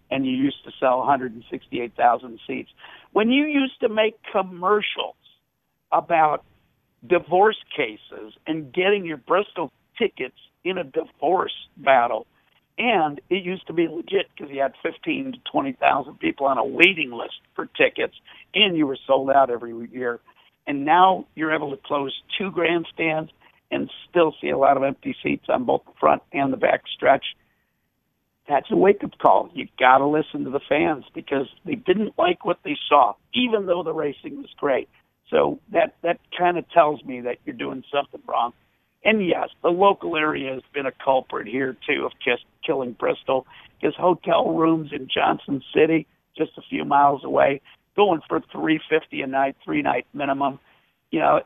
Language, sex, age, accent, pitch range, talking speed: English, male, 60-79, American, 140-215 Hz, 175 wpm